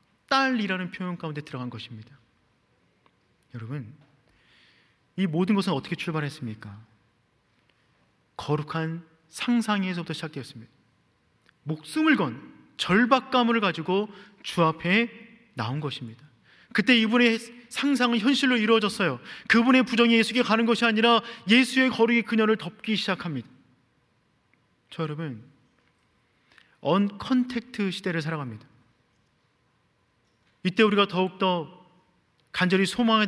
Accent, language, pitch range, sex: native, Korean, 135-205 Hz, male